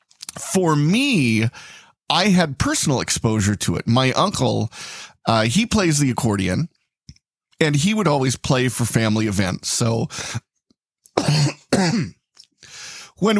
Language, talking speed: English, 110 wpm